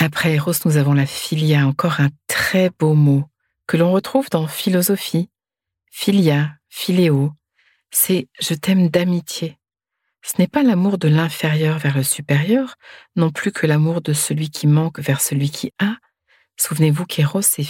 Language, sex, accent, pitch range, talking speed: French, female, French, 140-180 Hz, 165 wpm